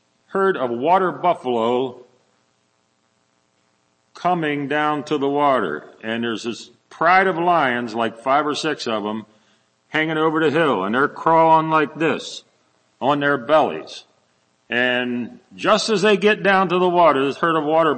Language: English